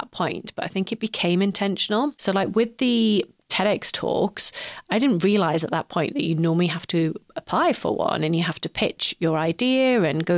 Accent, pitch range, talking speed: British, 165-195 Hz, 210 wpm